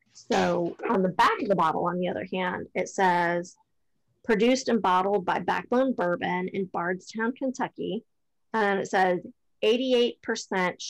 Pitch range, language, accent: 180-205 Hz, English, American